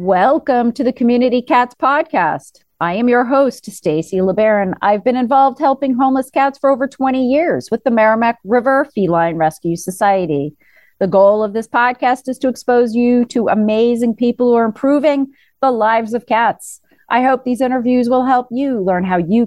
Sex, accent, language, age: female, American, English, 40-59